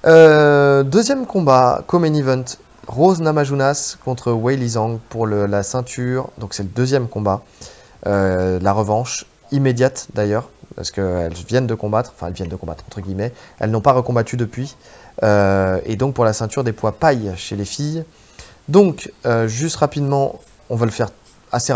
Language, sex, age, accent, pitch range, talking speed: French, male, 20-39, French, 110-140 Hz, 170 wpm